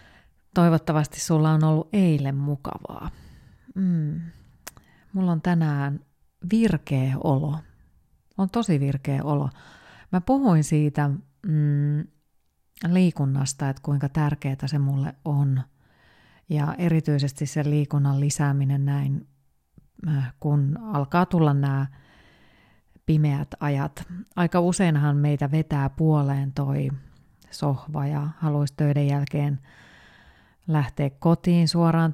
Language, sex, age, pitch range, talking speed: Finnish, female, 30-49, 140-165 Hz, 100 wpm